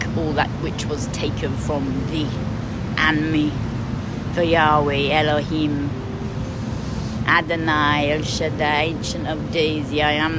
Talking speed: 115 wpm